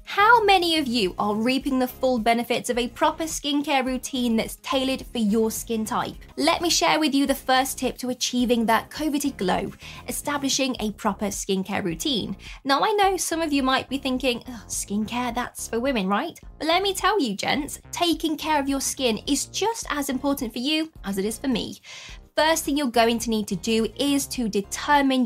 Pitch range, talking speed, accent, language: 215-285 Hz, 200 wpm, British, English